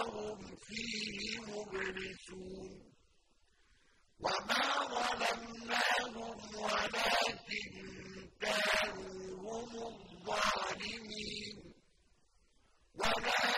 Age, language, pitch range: 50-69, Arabic, 200-225 Hz